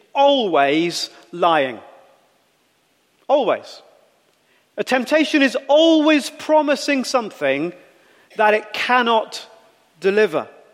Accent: British